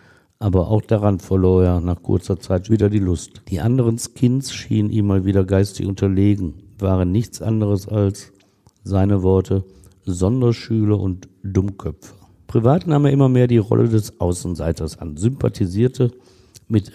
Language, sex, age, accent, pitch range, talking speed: German, male, 50-69, German, 95-120 Hz, 145 wpm